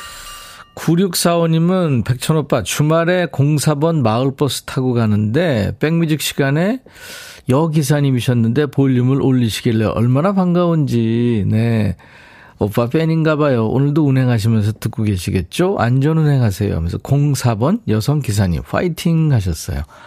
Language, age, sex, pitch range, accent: Korean, 40-59, male, 110-160 Hz, native